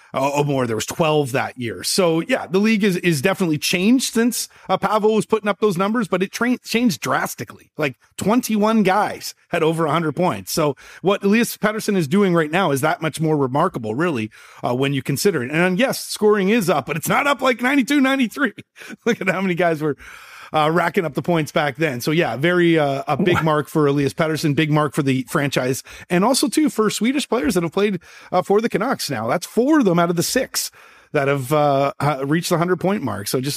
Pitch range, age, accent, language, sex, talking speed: 150-215 Hz, 30-49, American, English, male, 225 wpm